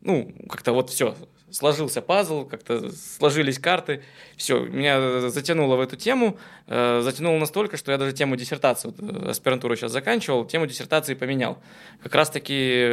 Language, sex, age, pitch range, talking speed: Russian, male, 20-39, 125-160 Hz, 140 wpm